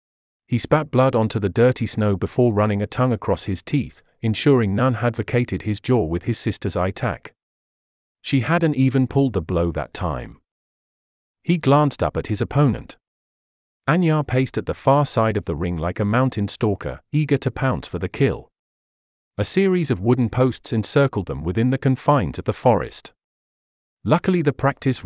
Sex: male